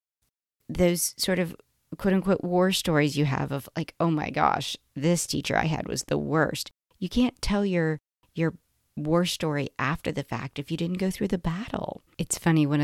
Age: 40-59